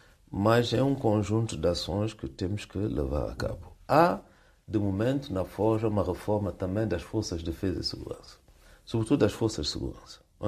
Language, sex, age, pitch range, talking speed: Portuguese, male, 60-79, 95-125 Hz, 185 wpm